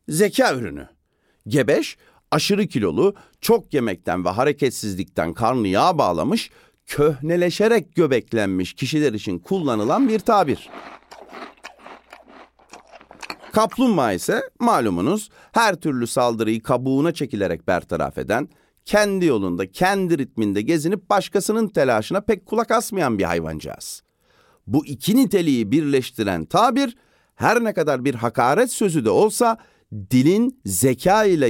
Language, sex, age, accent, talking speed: Turkish, male, 40-59, native, 110 wpm